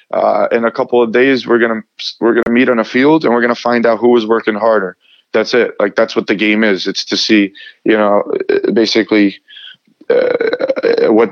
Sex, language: male, English